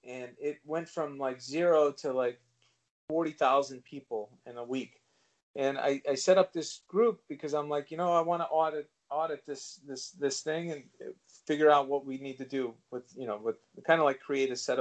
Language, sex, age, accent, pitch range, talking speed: English, male, 40-59, American, 120-165 Hz, 210 wpm